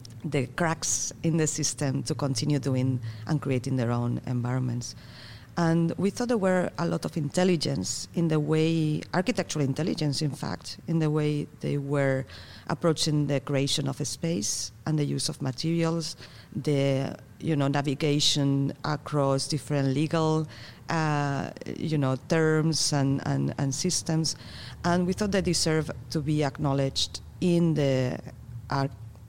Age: 40-59